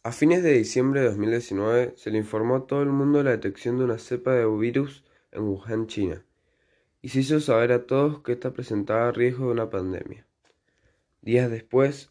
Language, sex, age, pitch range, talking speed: Spanish, male, 20-39, 110-125 Hz, 195 wpm